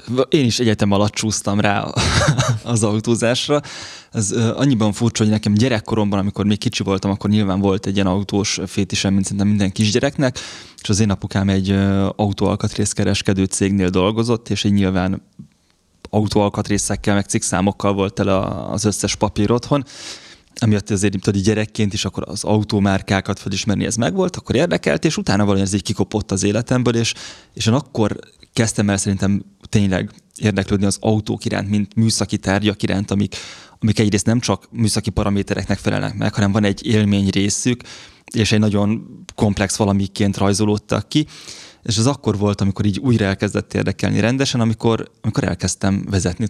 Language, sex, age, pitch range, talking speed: Hungarian, male, 20-39, 100-110 Hz, 150 wpm